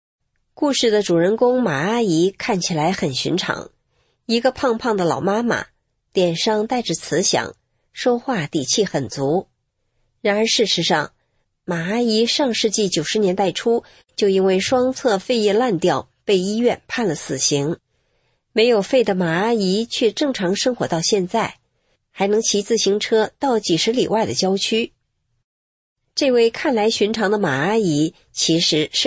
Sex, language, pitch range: female, English, 170-240 Hz